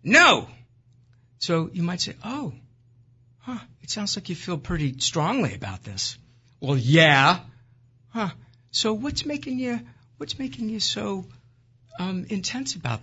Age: 50-69